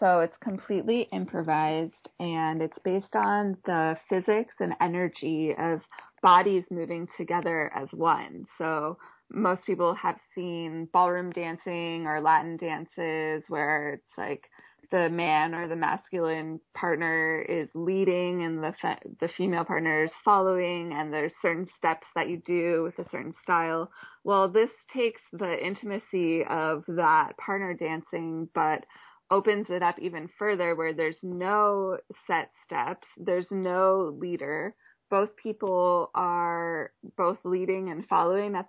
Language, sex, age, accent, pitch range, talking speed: English, female, 20-39, American, 165-190 Hz, 140 wpm